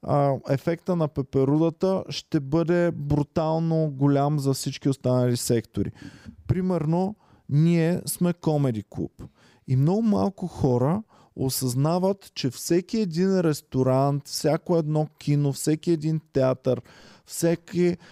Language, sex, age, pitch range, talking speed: Bulgarian, male, 20-39, 130-170 Hz, 105 wpm